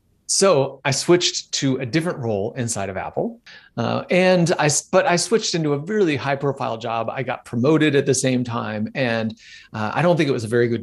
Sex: male